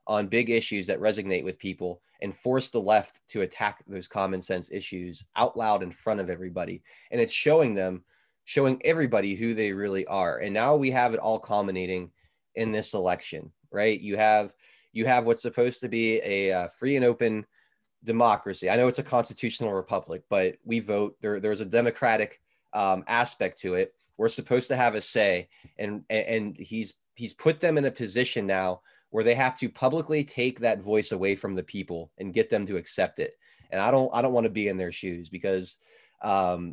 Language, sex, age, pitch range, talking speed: English, male, 20-39, 95-125 Hz, 200 wpm